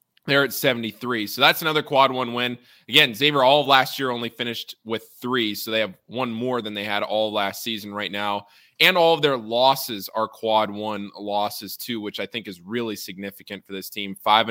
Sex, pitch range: male, 105-130 Hz